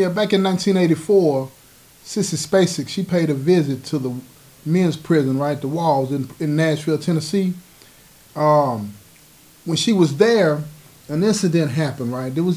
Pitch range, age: 135-175 Hz, 30-49